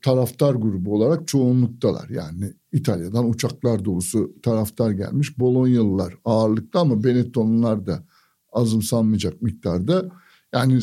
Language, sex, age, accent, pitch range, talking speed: Turkish, male, 60-79, native, 120-165 Hz, 100 wpm